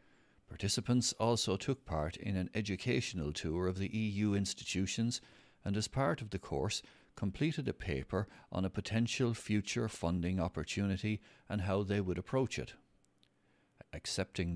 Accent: Irish